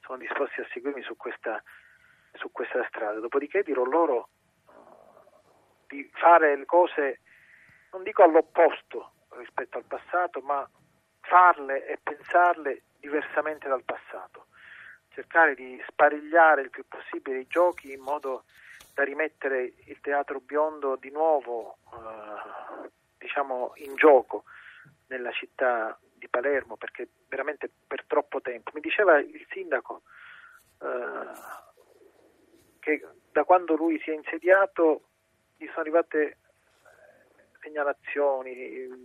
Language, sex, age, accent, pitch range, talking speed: Italian, male, 40-59, native, 140-190 Hz, 115 wpm